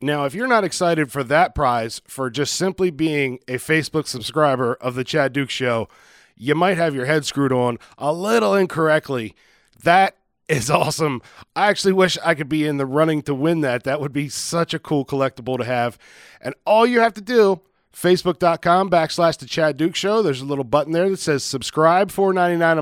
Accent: American